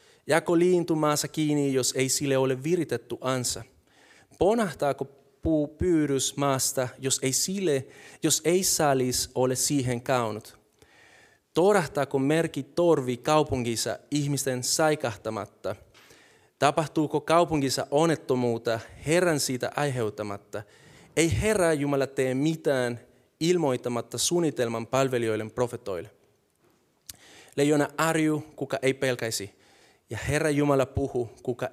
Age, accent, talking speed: 30-49, native, 100 wpm